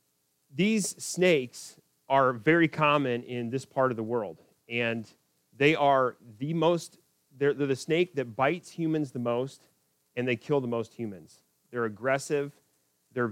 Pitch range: 115-140 Hz